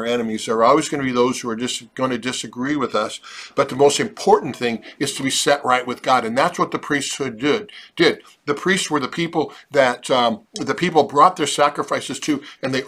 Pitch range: 120-150 Hz